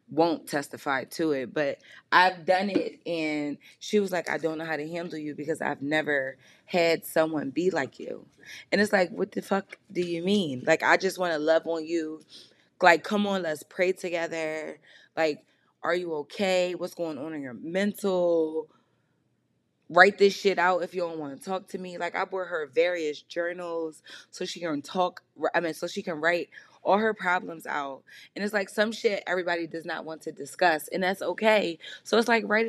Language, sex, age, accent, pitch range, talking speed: English, female, 20-39, American, 155-195 Hz, 200 wpm